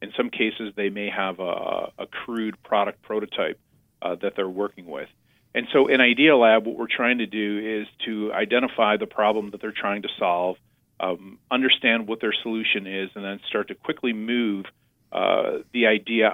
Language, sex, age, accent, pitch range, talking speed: English, male, 40-59, American, 95-115 Hz, 185 wpm